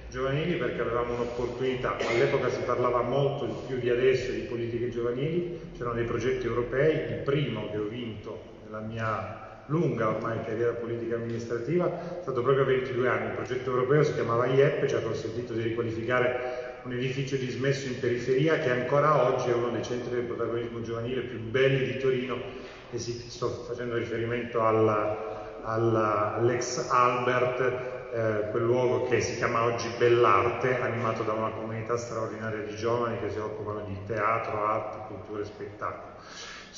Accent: native